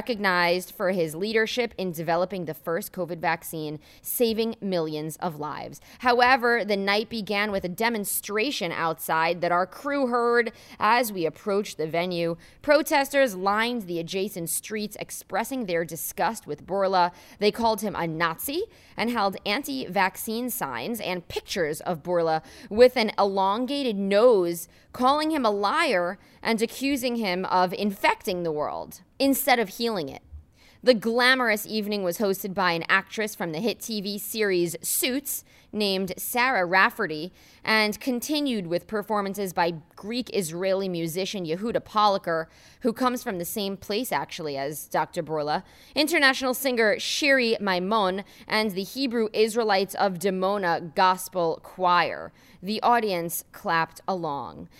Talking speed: 135 wpm